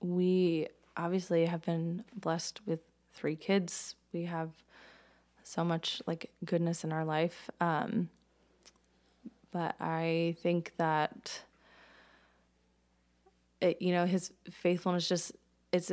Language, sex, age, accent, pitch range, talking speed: English, female, 20-39, American, 160-180 Hz, 105 wpm